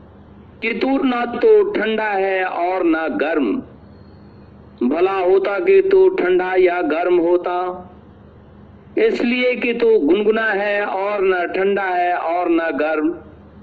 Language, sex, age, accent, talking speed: Hindi, male, 50-69, native, 135 wpm